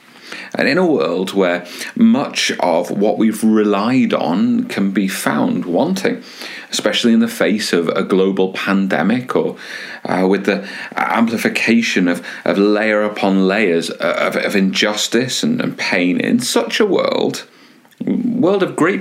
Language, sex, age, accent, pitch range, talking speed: English, male, 40-59, British, 95-140 Hz, 145 wpm